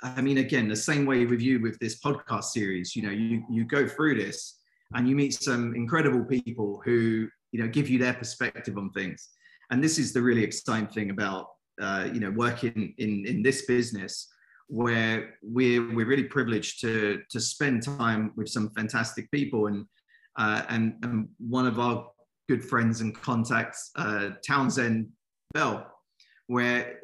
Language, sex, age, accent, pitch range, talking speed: English, male, 30-49, British, 115-135 Hz, 175 wpm